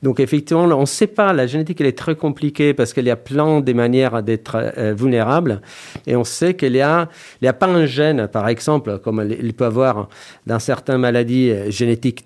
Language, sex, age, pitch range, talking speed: French, male, 40-59, 115-150 Hz, 205 wpm